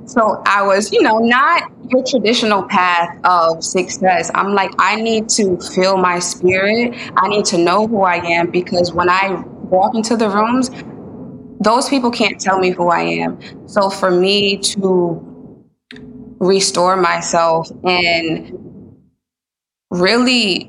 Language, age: English, 20-39